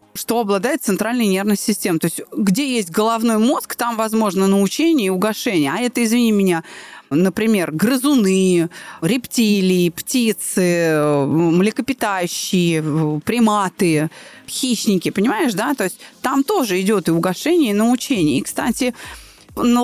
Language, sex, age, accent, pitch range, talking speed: Russian, female, 20-39, native, 185-245 Hz, 125 wpm